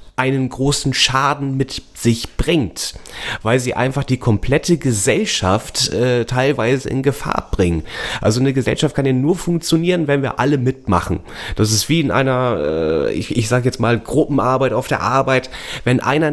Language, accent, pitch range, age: German, German, 115-145 Hz, 30-49